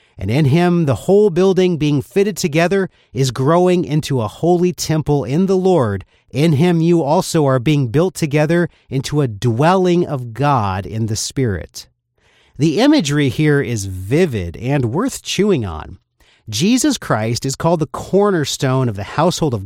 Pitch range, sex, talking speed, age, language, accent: 120-170 Hz, male, 160 wpm, 40-59, English, American